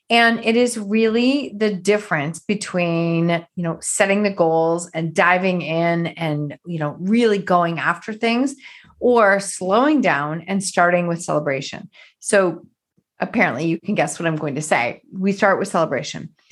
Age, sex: 30-49, female